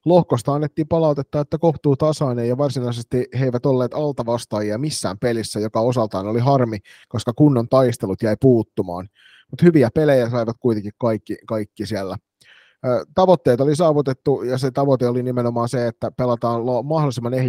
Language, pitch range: Finnish, 110-135 Hz